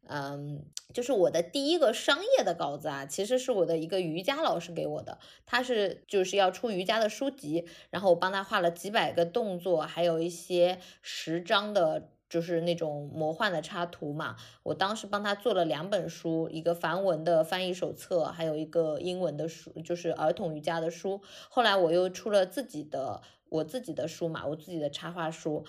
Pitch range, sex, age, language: 160-210 Hz, female, 20-39, Chinese